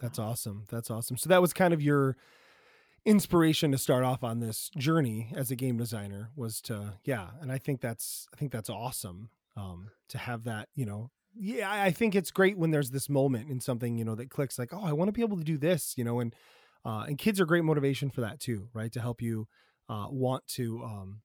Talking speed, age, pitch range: 235 wpm, 20-39, 120-160 Hz